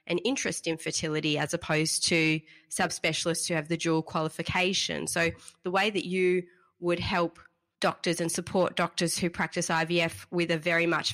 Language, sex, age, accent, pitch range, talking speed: English, female, 20-39, Australian, 165-190 Hz, 160 wpm